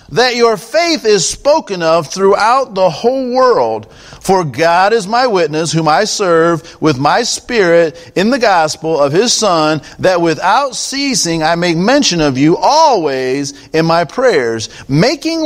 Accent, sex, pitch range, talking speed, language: American, male, 160-215 Hz, 155 wpm, English